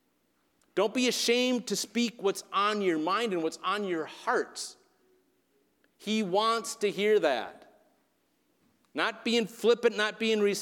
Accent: American